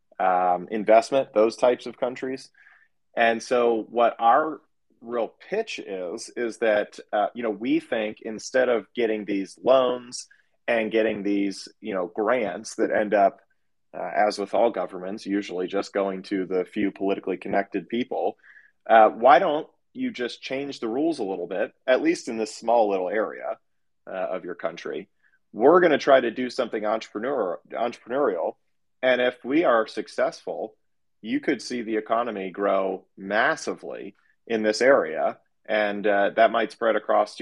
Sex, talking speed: male, 160 wpm